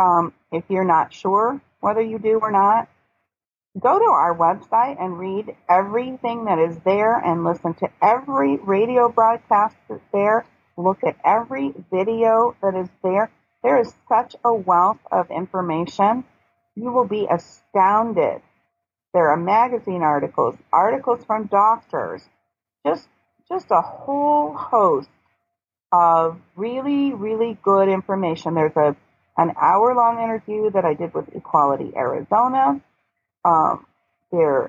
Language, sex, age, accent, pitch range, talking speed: English, female, 40-59, American, 170-230 Hz, 130 wpm